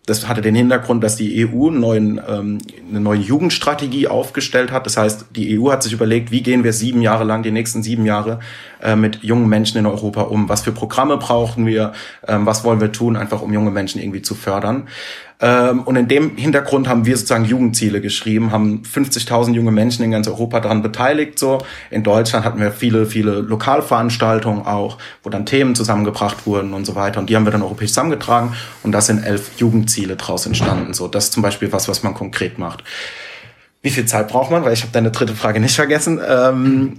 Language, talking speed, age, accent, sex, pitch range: German, 205 wpm, 30-49, German, male, 105-120 Hz